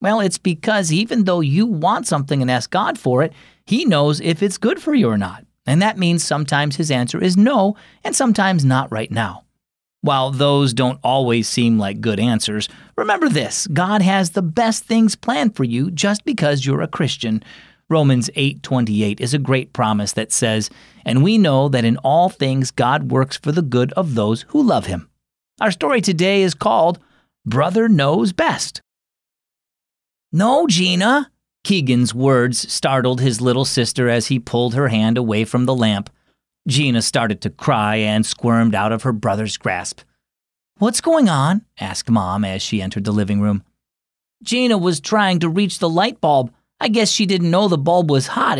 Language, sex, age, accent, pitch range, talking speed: English, male, 40-59, American, 120-195 Hz, 180 wpm